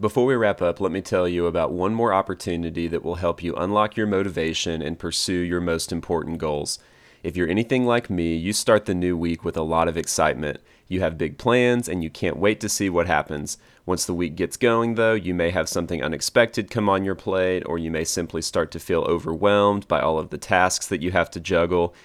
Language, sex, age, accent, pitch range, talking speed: English, male, 30-49, American, 85-100 Hz, 230 wpm